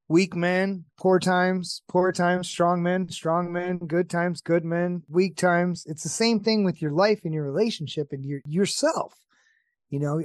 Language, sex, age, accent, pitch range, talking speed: English, male, 30-49, American, 145-190 Hz, 180 wpm